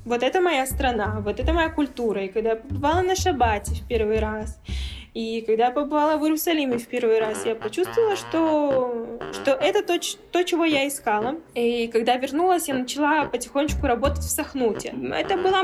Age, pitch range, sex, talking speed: 10-29, 215-285 Hz, female, 185 wpm